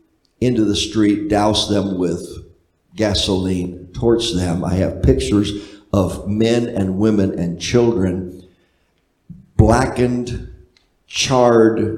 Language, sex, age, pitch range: English, male, 50-69, 90-110 Hz